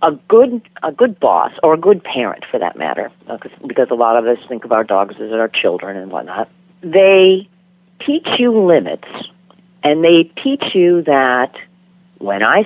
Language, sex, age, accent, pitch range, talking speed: English, female, 50-69, American, 150-215 Hz, 175 wpm